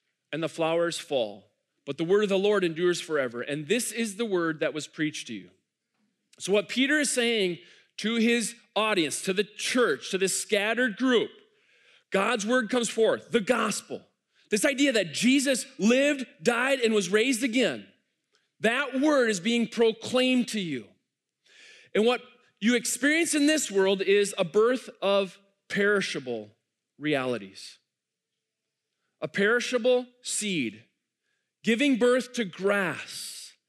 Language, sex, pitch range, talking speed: English, male, 190-255 Hz, 145 wpm